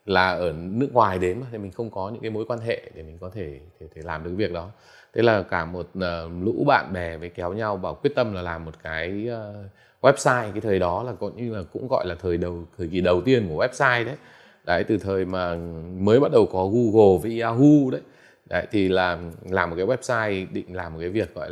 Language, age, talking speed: Vietnamese, 20-39, 245 wpm